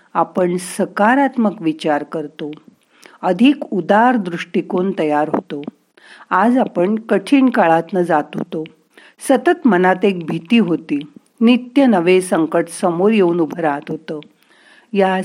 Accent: native